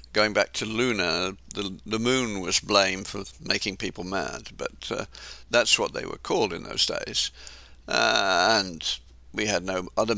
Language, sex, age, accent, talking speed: English, male, 60-79, British, 170 wpm